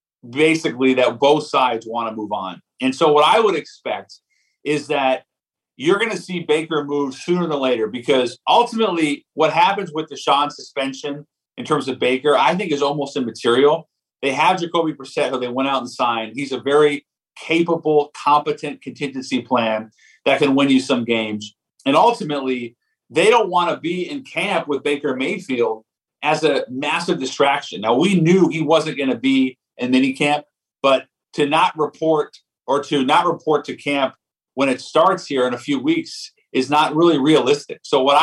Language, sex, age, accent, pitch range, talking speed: English, male, 40-59, American, 125-165 Hz, 180 wpm